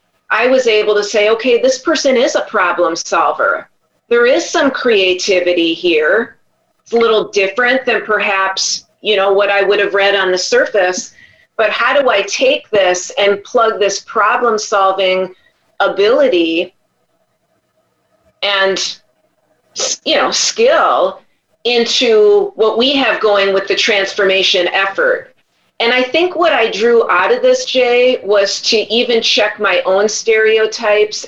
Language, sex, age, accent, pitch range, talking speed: English, female, 40-59, American, 195-245 Hz, 145 wpm